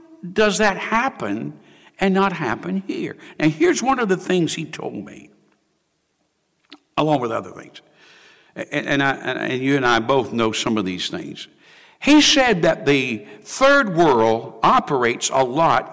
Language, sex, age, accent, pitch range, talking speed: English, male, 60-79, American, 150-215 Hz, 160 wpm